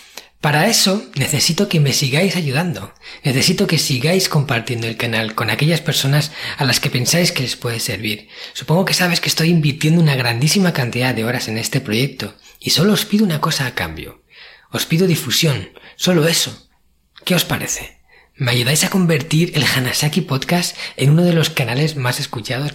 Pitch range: 120-160 Hz